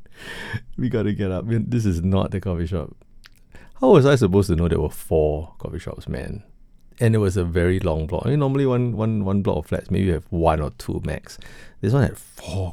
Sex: male